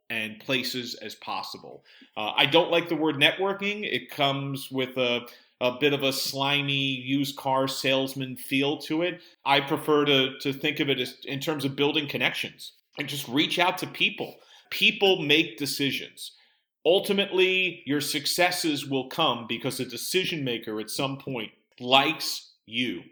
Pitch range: 130-150 Hz